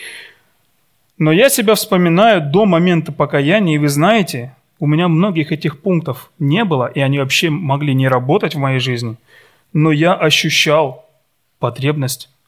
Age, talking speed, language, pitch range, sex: 30-49, 145 wpm, Russian, 125-155 Hz, male